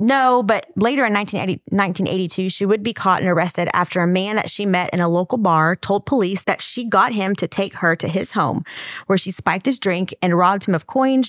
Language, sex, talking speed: English, female, 230 wpm